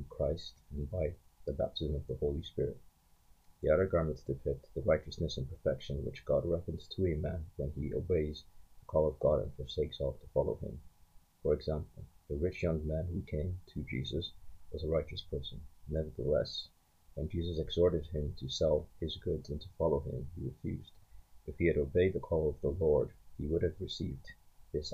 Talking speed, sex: 190 wpm, male